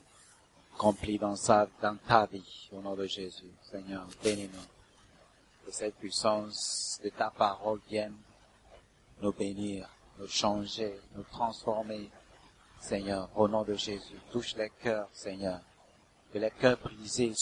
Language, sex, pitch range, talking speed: English, male, 105-125 Hz, 130 wpm